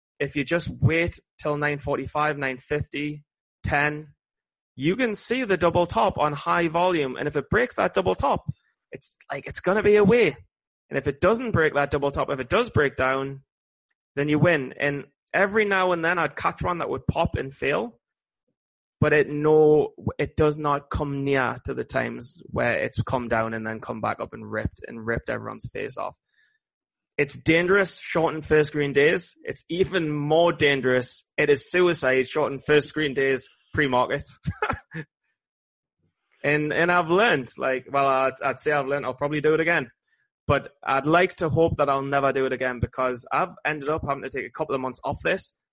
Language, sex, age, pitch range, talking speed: English, male, 20-39, 135-160 Hz, 195 wpm